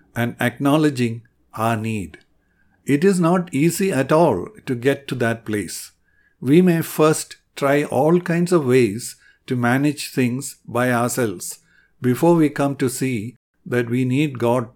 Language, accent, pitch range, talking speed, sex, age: English, Indian, 120-155 Hz, 150 wpm, male, 60-79